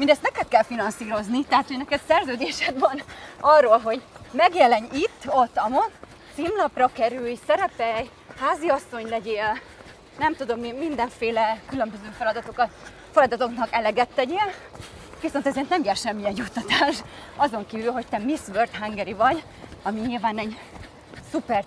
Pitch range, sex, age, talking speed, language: 230-295 Hz, female, 30-49, 125 wpm, Hungarian